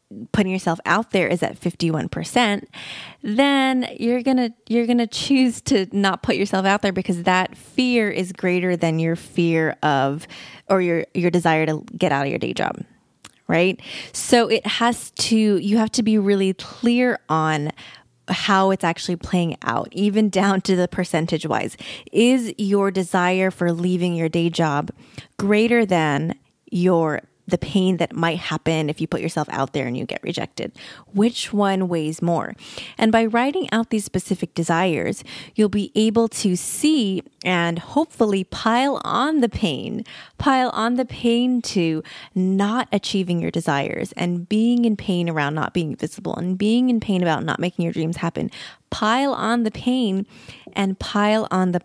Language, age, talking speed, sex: English, 20-39, 170 wpm, female